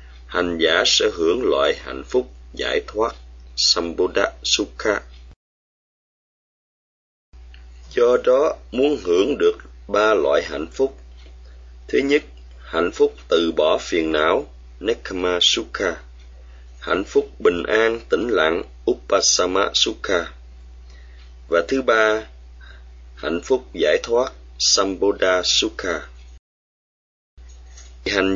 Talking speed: 100 wpm